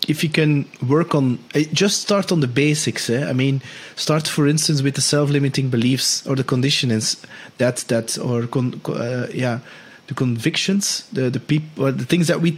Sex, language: male, English